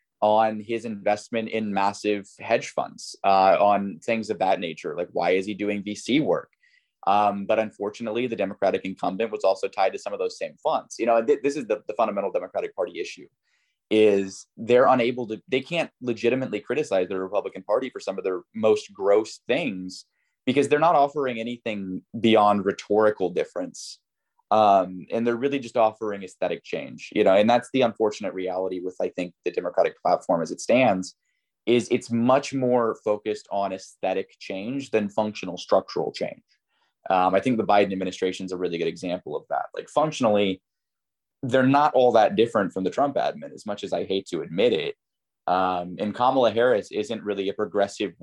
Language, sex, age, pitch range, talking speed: English, male, 20-39, 100-135 Hz, 185 wpm